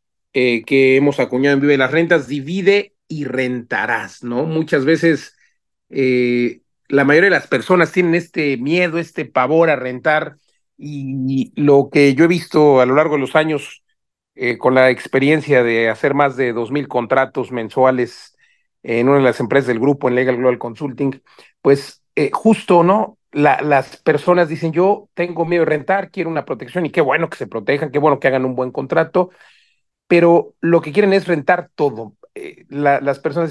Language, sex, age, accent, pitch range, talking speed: Spanish, male, 40-59, Mexican, 130-165 Hz, 185 wpm